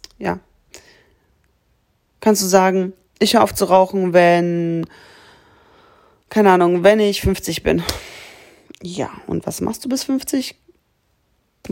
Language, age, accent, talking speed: German, 30-49, German, 125 wpm